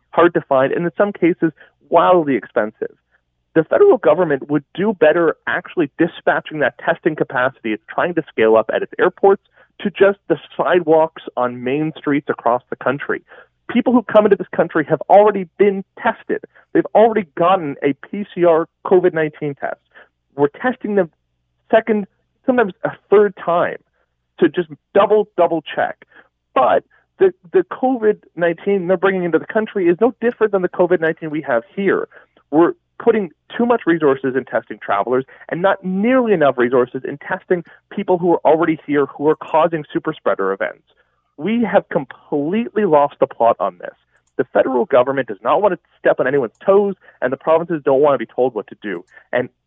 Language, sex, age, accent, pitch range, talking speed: English, male, 40-59, American, 140-200 Hz, 175 wpm